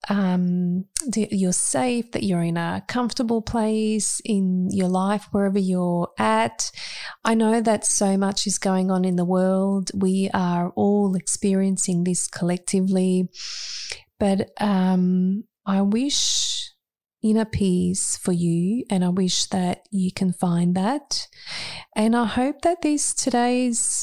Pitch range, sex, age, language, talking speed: 180-220 Hz, female, 30-49, English, 135 wpm